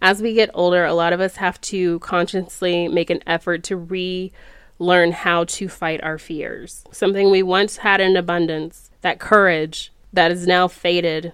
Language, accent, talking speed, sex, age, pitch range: English, American, 175 wpm, female, 20-39, 175-205 Hz